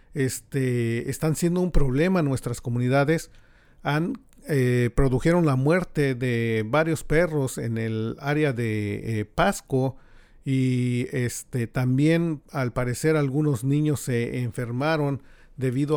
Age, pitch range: 40-59, 125-160 Hz